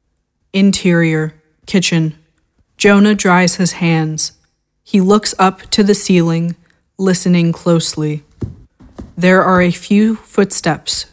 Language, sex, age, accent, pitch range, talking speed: English, female, 20-39, American, 165-190 Hz, 100 wpm